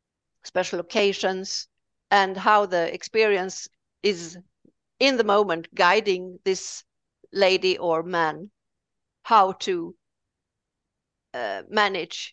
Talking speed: 90 wpm